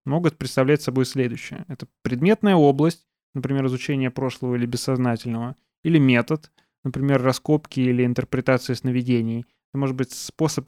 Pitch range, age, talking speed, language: 125-155 Hz, 20-39, 130 wpm, Russian